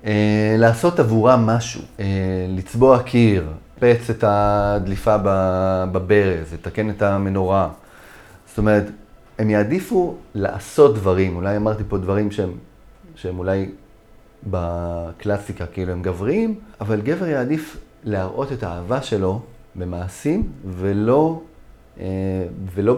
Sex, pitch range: male, 95-125 Hz